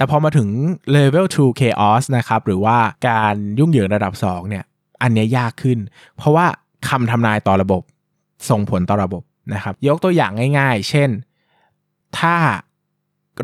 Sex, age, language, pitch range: male, 20-39, Thai, 105-140 Hz